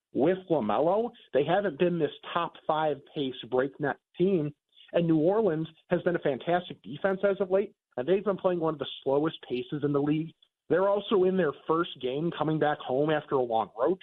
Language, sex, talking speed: English, male, 200 wpm